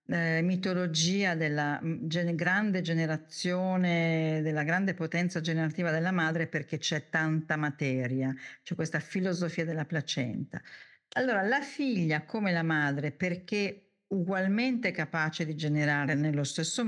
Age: 50-69